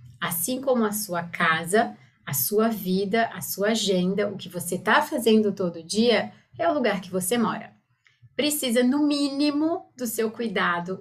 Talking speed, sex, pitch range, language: 165 wpm, female, 180-230 Hz, Portuguese